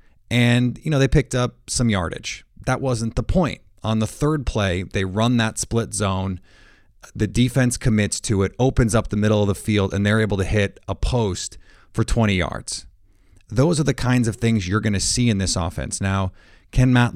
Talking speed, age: 205 wpm, 30-49